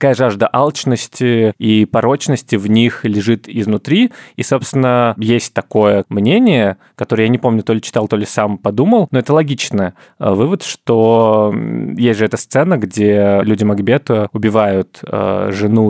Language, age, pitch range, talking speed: Russian, 20-39, 105-135 Hz, 145 wpm